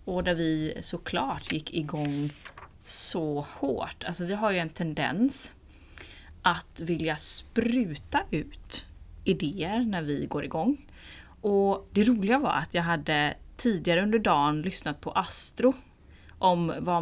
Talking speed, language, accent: 135 wpm, Swedish, native